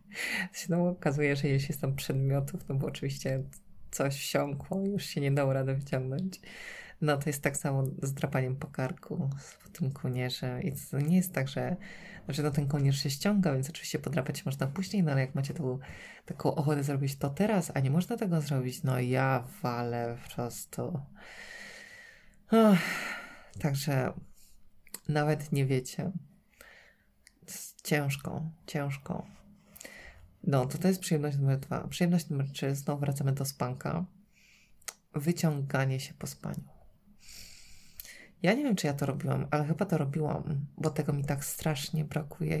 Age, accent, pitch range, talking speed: 20-39, native, 140-170 Hz, 155 wpm